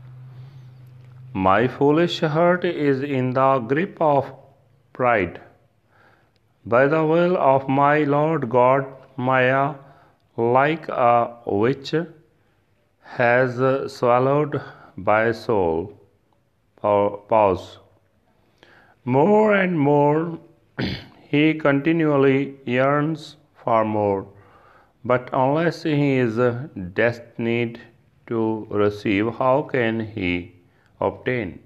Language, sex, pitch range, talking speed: Punjabi, male, 115-145 Hz, 85 wpm